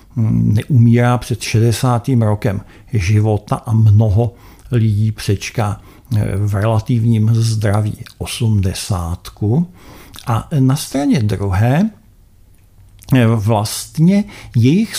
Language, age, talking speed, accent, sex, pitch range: Czech, 50-69, 75 wpm, native, male, 105-135 Hz